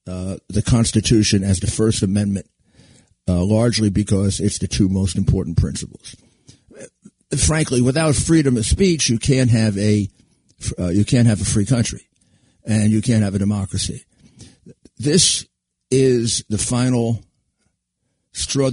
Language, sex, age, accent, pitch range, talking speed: English, male, 50-69, American, 100-130 Hz, 140 wpm